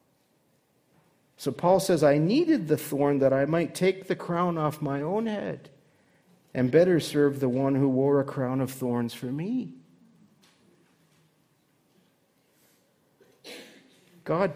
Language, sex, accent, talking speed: English, male, American, 130 wpm